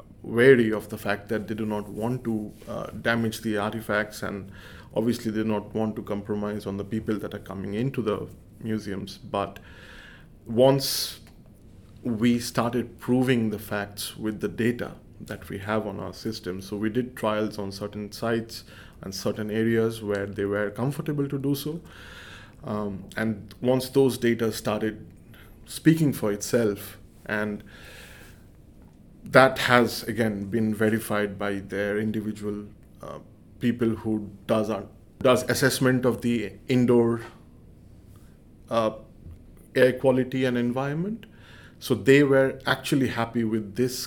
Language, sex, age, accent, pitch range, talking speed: English, male, 20-39, Indian, 105-120 Hz, 140 wpm